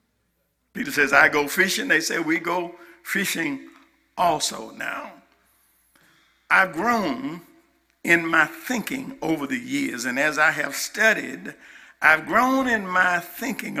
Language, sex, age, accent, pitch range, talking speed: English, male, 50-69, American, 170-260 Hz, 130 wpm